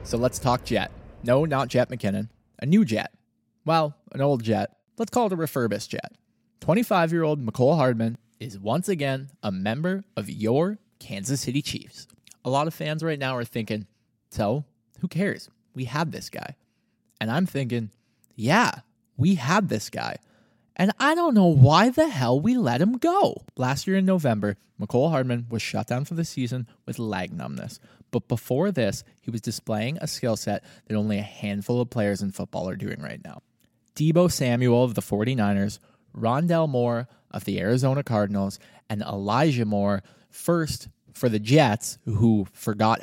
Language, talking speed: English, 175 wpm